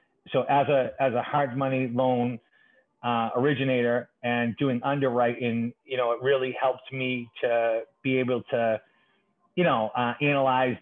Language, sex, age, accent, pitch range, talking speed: English, male, 30-49, American, 120-135 Hz, 150 wpm